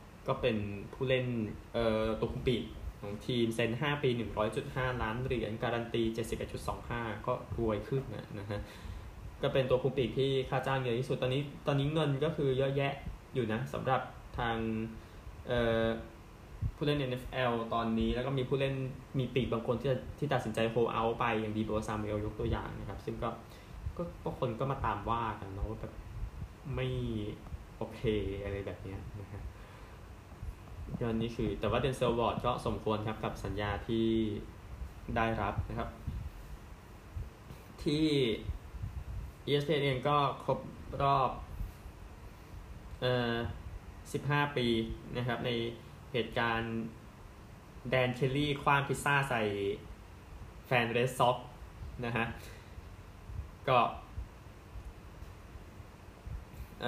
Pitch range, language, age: 100-130 Hz, Thai, 10-29